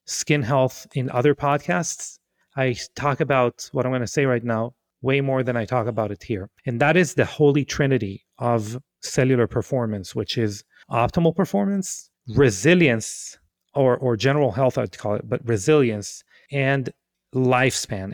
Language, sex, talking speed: English, male, 160 wpm